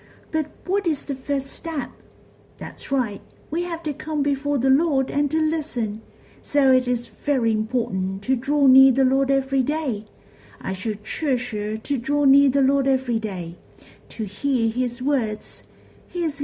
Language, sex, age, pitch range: Chinese, female, 50-69, 215-280 Hz